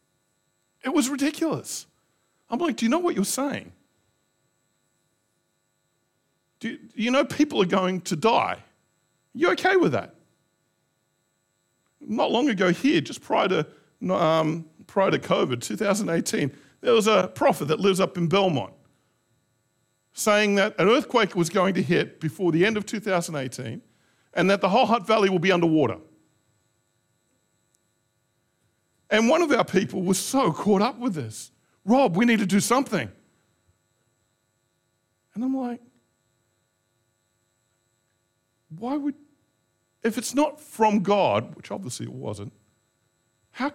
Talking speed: 135 wpm